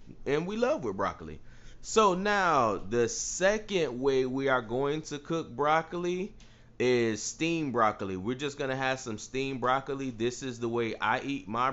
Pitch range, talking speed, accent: 110-140 Hz, 170 wpm, American